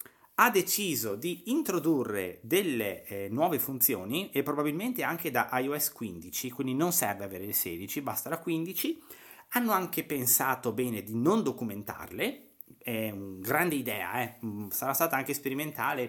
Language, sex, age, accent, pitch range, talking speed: Italian, male, 30-49, native, 105-150 Hz, 145 wpm